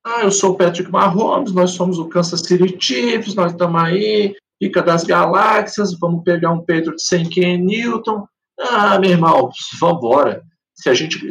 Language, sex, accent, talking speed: Portuguese, male, Brazilian, 160 wpm